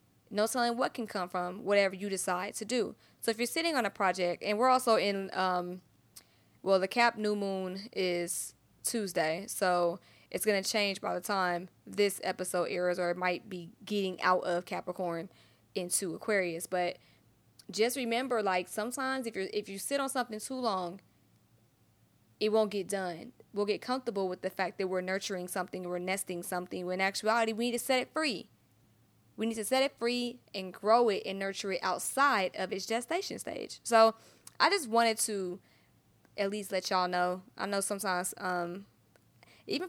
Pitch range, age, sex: 185-230 Hz, 20-39, female